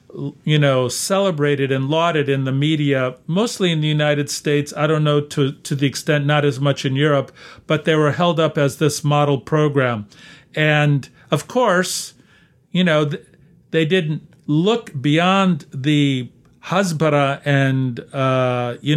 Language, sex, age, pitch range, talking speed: English, male, 50-69, 135-165 Hz, 150 wpm